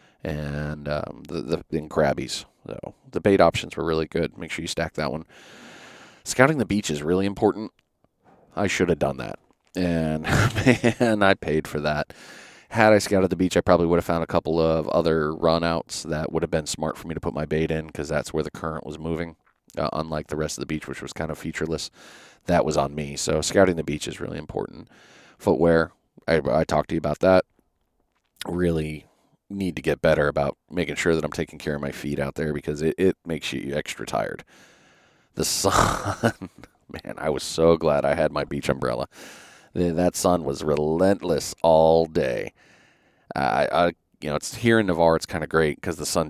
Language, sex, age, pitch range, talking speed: English, male, 30-49, 75-85 Hz, 205 wpm